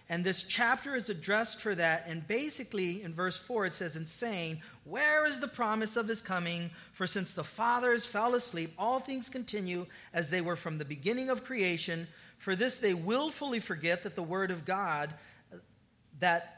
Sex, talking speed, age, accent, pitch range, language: male, 185 wpm, 40-59, American, 165-210 Hz, English